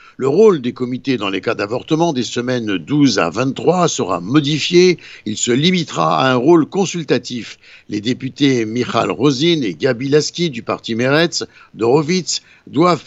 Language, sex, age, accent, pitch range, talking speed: Italian, male, 60-79, French, 125-165 Hz, 155 wpm